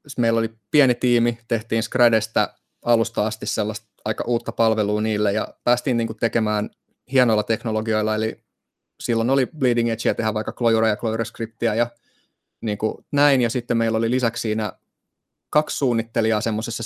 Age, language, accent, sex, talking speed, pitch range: 20-39, Finnish, native, male, 155 wpm, 105-115 Hz